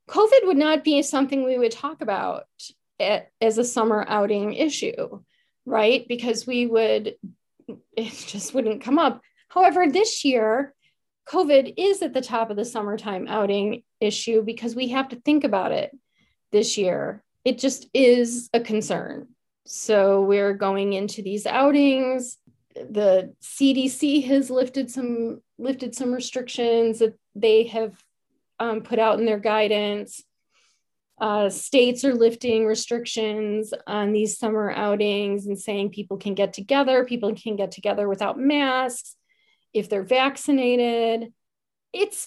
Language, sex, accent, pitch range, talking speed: English, female, American, 215-265 Hz, 140 wpm